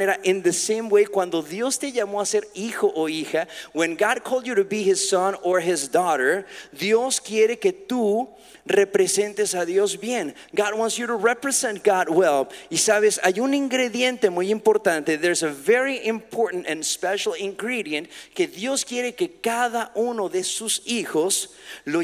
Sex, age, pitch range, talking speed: male, 40-59, 180-240 Hz, 170 wpm